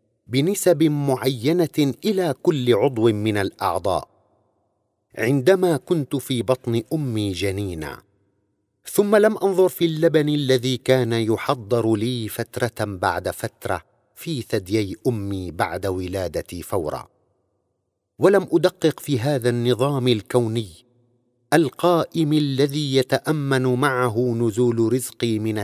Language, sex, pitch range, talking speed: Arabic, male, 105-145 Hz, 105 wpm